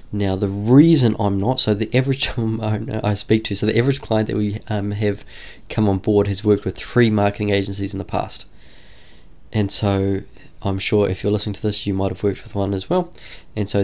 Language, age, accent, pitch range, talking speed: English, 20-39, Australian, 100-115 Hz, 215 wpm